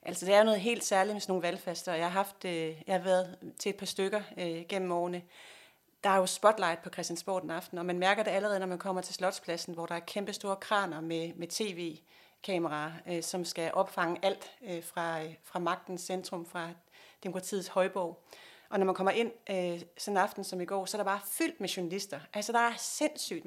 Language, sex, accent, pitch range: Danish, female, native, 175-205 Hz